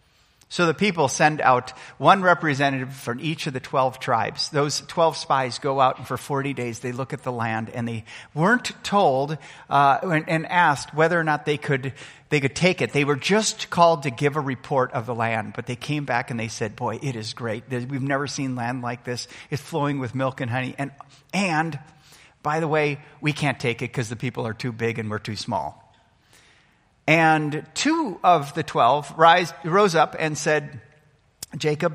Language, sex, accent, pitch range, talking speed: English, male, American, 125-155 Hz, 200 wpm